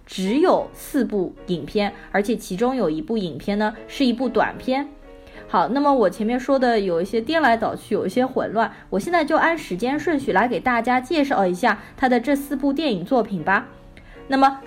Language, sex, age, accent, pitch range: Chinese, female, 20-39, native, 200-265 Hz